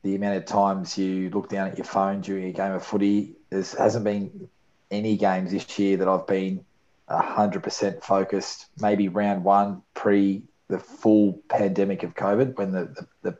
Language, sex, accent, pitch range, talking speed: English, male, Australian, 95-105 Hz, 190 wpm